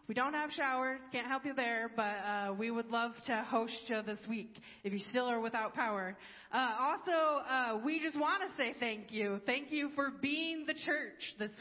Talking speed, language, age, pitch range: 210 wpm, English, 20-39, 225-285 Hz